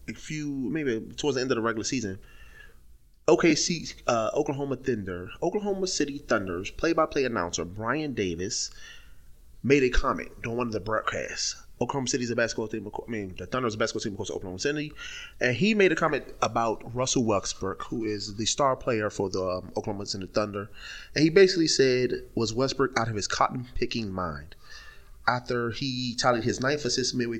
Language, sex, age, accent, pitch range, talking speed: English, male, 30-49, American, 100-130 Hz, 180 wpm